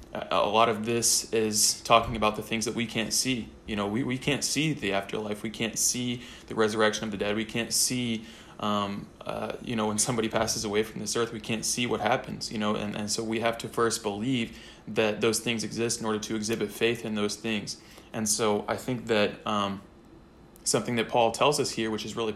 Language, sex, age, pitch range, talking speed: English, male, 20-39, 105-115 Hz, 230 wpm